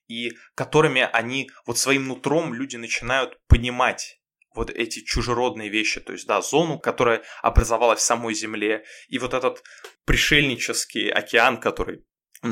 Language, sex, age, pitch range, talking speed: Russian, male, 20-39, 115-160 Hz, 135 wpm